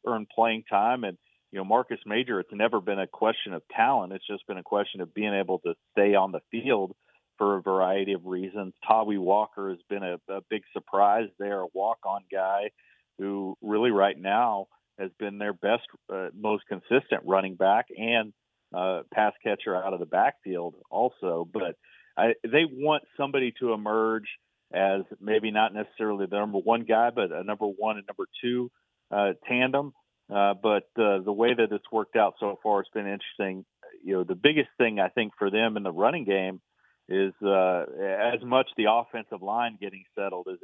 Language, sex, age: English, male, 40-59